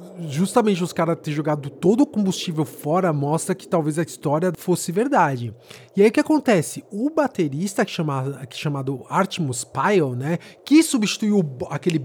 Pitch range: 150-210 Hz